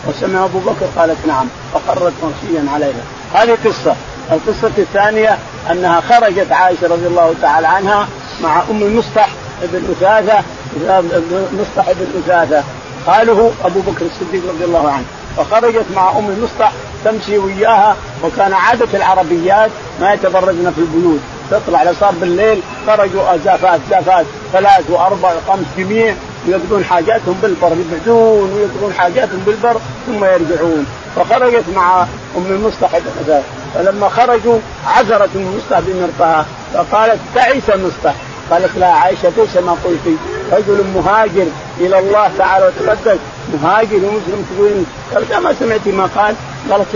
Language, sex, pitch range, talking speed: Arabic, male, 170-210 Hz, 130 wpm